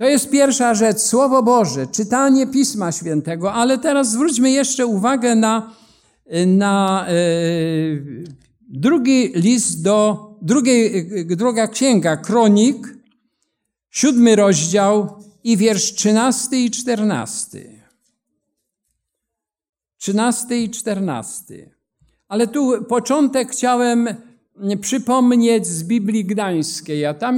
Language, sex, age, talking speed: Polish, male, 50-69, 95 wpm